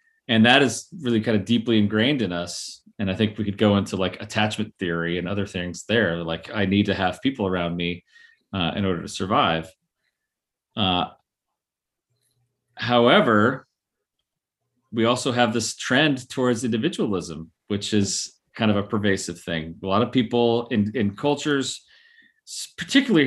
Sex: male